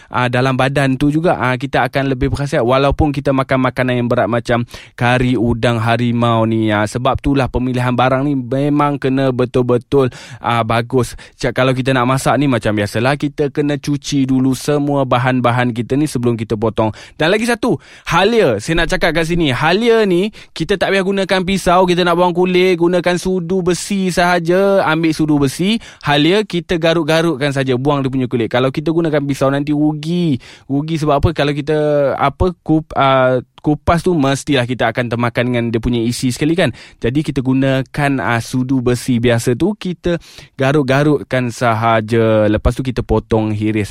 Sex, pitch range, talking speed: male, 125-150 Hz, 175 wpm